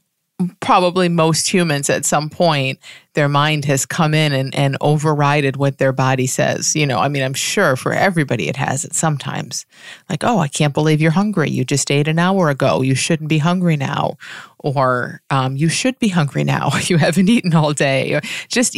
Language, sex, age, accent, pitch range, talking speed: English, female, 30-49, American, 140-170 Hz, 195 wpm